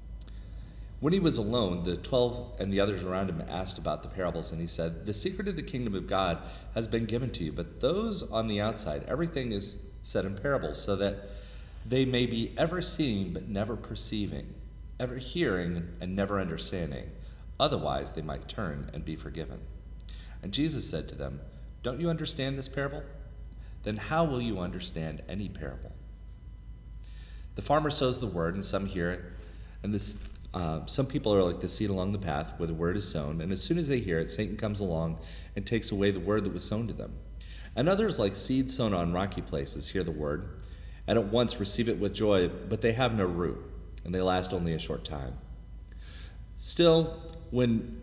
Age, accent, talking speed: 40-59, American, 195 wpm